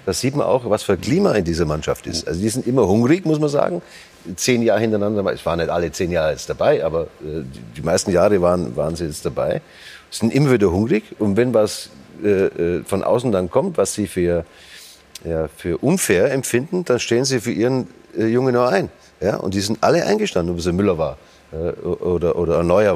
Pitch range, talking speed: 90-125 Hz, 210 wpm